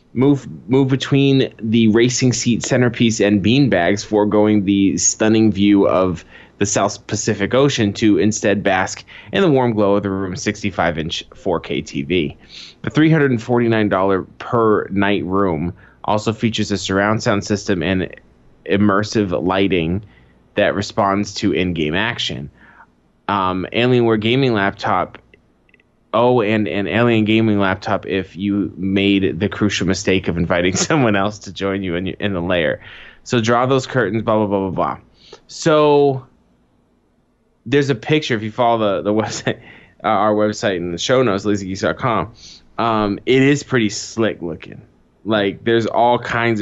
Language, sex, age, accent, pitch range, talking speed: English, male, 20-39, American, 100-120 Hz, 145 wpm